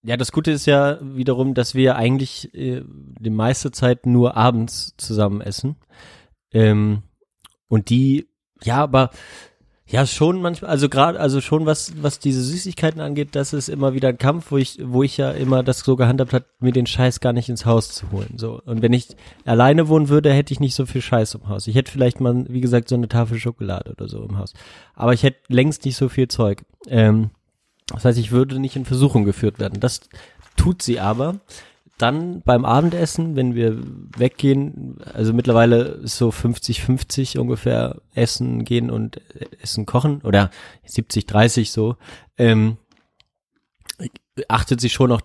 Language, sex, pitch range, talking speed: German, male, 110-135 Hz, 180 wpm